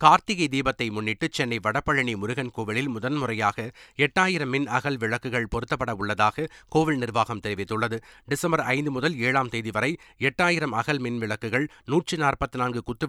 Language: Tamil